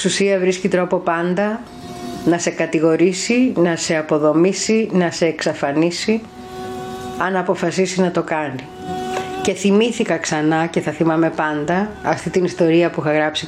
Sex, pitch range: female, 150-190 Hz